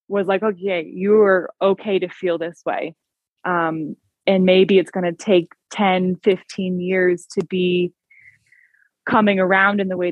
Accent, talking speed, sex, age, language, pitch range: American, 155 wpm, female, 20-39, English, 170-190 Hz